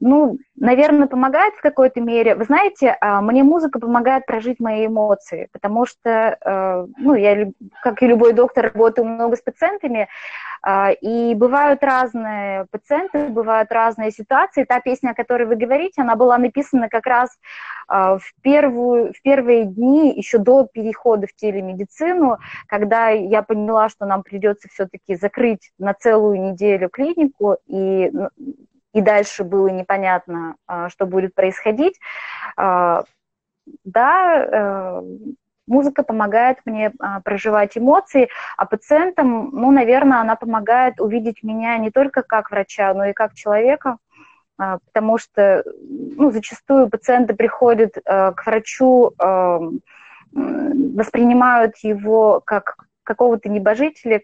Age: 20-39